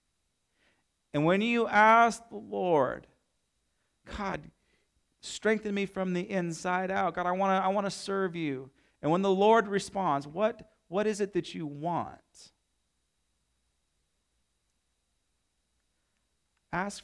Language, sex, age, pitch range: English, male, 40-59, 130-190 Hz